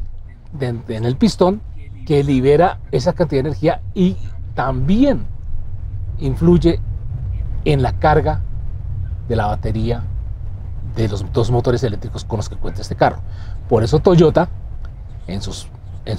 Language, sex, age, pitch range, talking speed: Spanish, male, 40-59, 100-145 Hz, 120 wpm